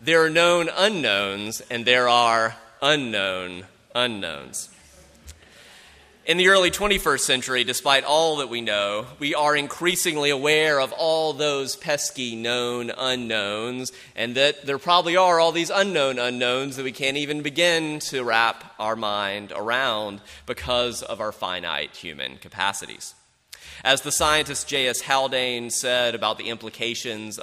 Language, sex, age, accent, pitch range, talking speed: English, male, 30-49, American, 110-150 Hz, 140 wpm